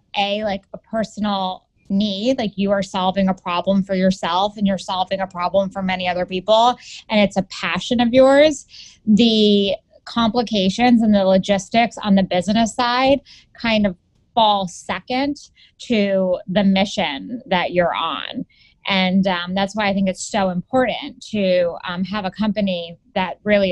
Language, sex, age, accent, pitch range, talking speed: English, female, 20-39, American, 180-215 Hz, 160 wpm